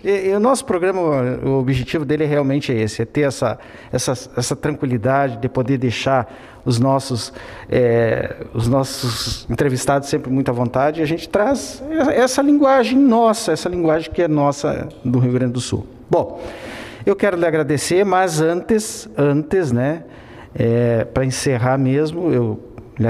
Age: 50-69